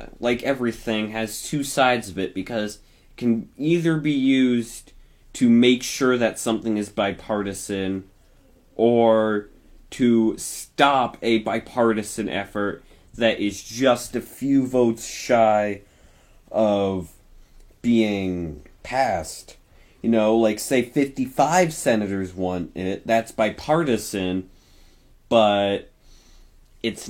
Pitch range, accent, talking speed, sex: 100-125 Hz, American, 105 wpm, male